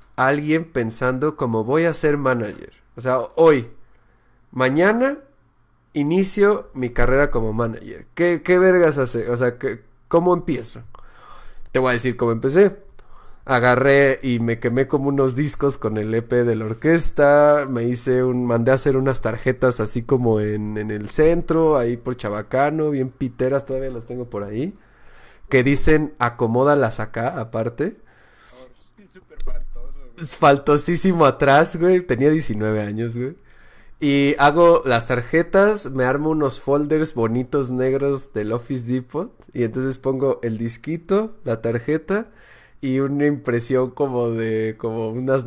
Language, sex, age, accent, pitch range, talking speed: Spanish, male, 30-49, Mexican, 120-150 Hz, 140 wpm